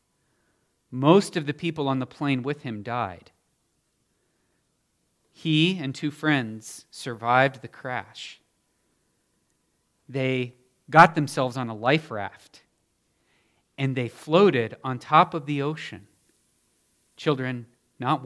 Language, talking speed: English, 110 wpm